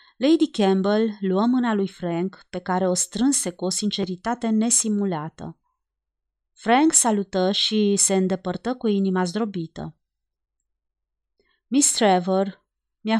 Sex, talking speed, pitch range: female, 115 wpm, 175-220 Hz